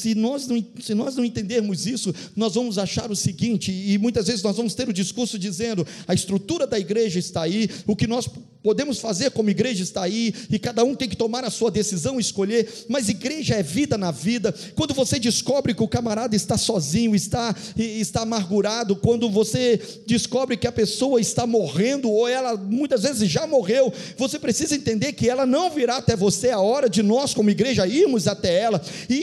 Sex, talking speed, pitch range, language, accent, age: male, 200 wpm, 205-250 Hz, Portuguese, Brazilian, 50-69